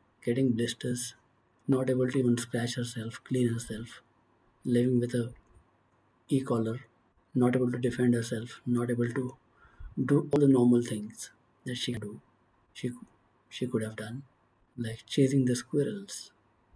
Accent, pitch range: Indian, 120-140 Hz